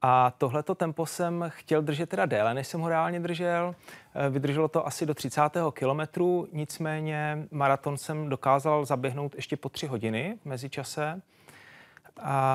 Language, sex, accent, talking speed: Czech, male, native, 145 wpm